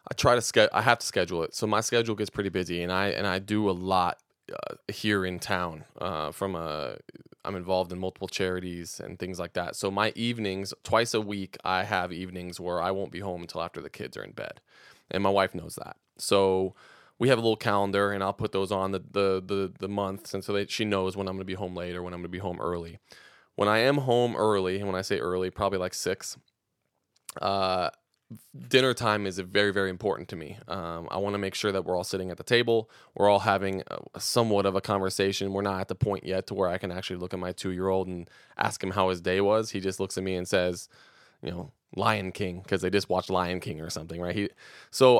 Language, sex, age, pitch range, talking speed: English, male, 20-39, 90-100 Hz, 250 wpm